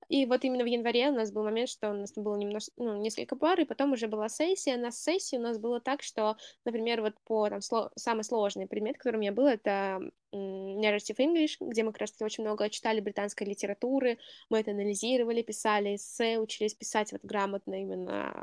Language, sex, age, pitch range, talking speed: Russian, female, 10-29, 210-265 Hz, 200 wpm